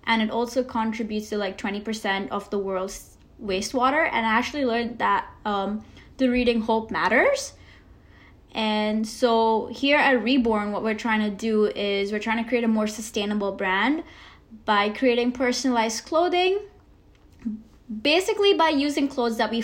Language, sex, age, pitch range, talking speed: English, female, 10-29, 210-255 Hz, 155 wpm